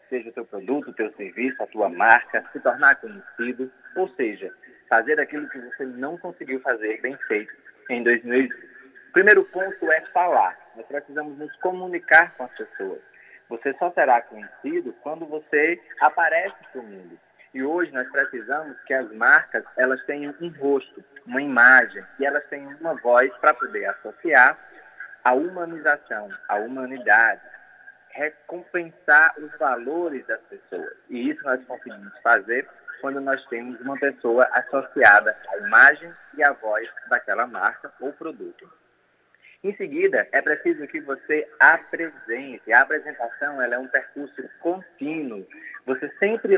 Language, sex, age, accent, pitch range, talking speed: Portuguese, male, 20-39, Brazilian, 130-185 Hz, 145 wpm